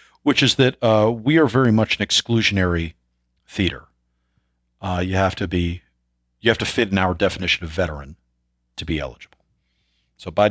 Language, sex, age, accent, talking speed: English, male, 40-59, American, 170 wpm